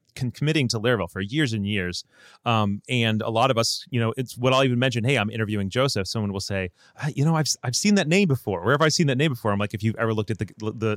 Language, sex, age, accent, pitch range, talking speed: English, male, 30-49, American, 105-140 Hz, 285 wpm